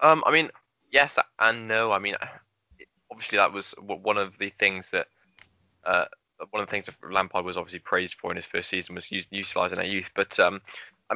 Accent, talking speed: British, 210 wpm